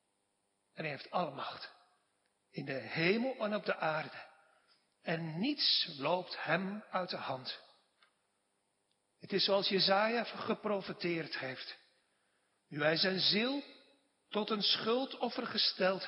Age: 50-69